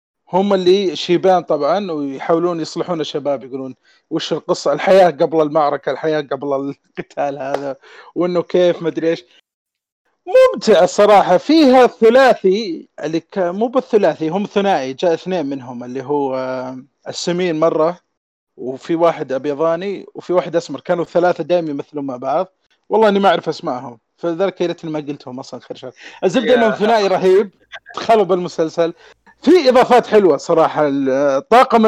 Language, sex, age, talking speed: Arabic, male, 30-49, 135 wpm